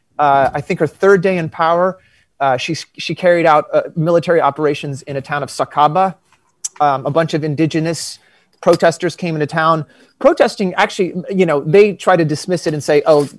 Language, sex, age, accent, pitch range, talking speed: English, male, 30-49, American, 140-170 Hz, 190 wpm